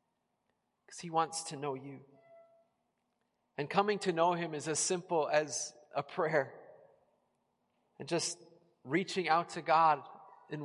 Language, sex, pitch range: English, male, 145-175 Hz